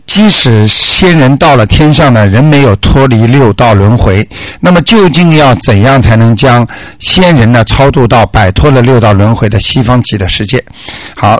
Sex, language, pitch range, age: male, Chinese, 110-145 Hz, 60-79